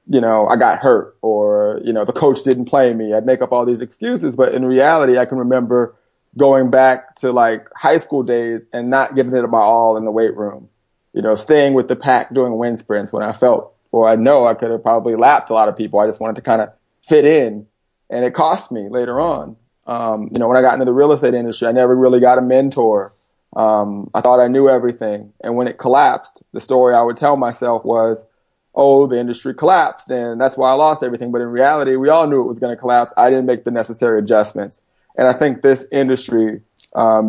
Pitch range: 115-130 Hz